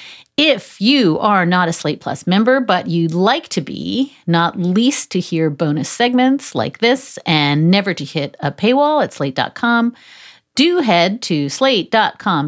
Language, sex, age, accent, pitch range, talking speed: English, female, 40-59, American, 170-245 Hz, 160 wpm